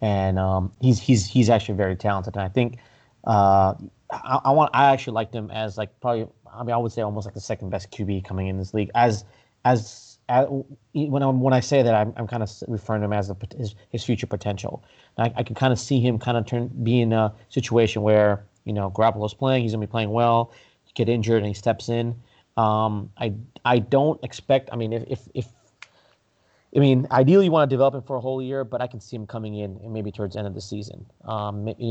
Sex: male